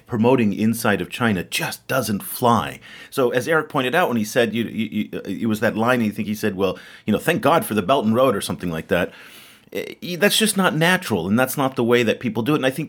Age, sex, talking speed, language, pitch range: 40-59, male, 260 wpm, English, 85-125 Hz